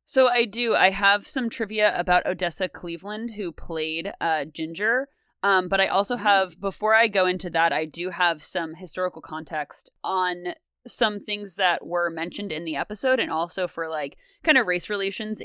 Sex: female